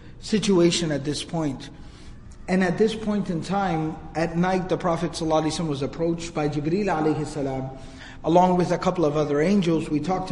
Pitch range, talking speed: 155-185 Hz, 170 wpm